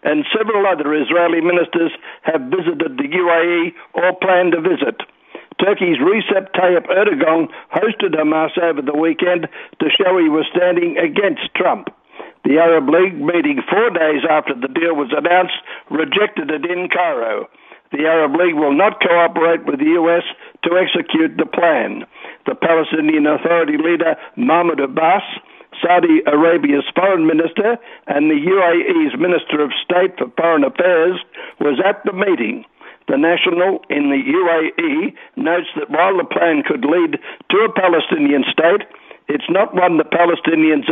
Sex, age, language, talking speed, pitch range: male, 60-79, English, 150 wpm, 155-190 Hz